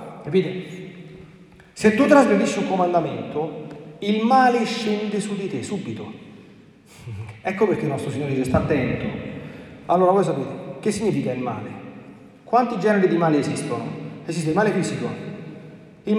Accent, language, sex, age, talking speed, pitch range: native, Italian, male, 40-59, 140 wpm, 155-210 Hz